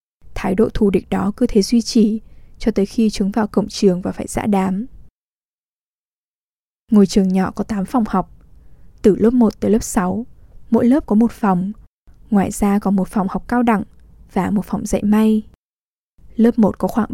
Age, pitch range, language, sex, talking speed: 10-29, 200-235 Hz, English, female, 195 wpm